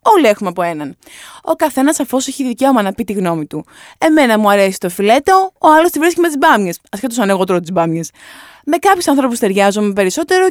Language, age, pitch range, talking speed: Greek, 20-39, 210-310 Hz, 210 wpm